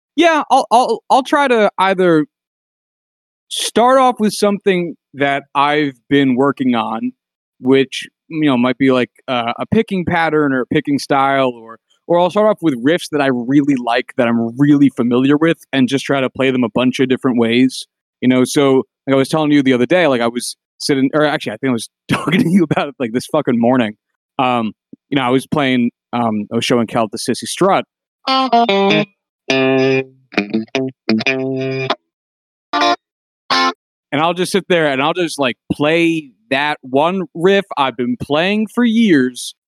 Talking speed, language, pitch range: 180 wpm, English, 125-165 Hz